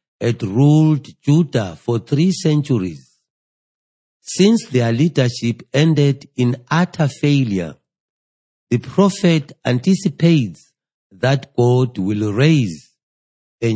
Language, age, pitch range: English, 60-79, 115-150 Hz